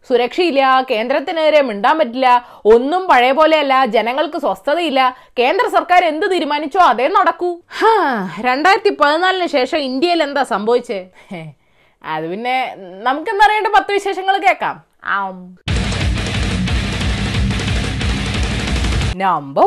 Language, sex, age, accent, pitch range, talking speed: Malayalam, female, 20-39, native, 195-325 Hz, 90 wpm